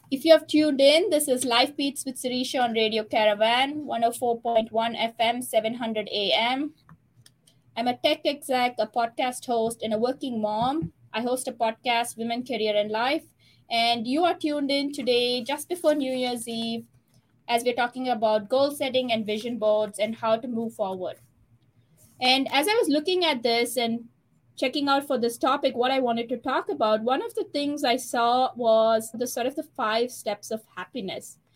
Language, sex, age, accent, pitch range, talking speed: English, female, 20-39, Indian, 215-260 Hz, 185 wpm